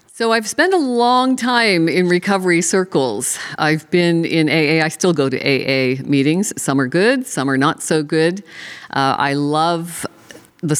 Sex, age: female, 50-69